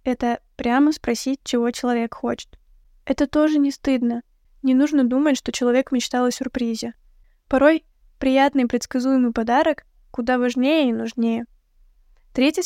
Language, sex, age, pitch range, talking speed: Russian, female, 10-29, 245-275 Hz, 130 wpm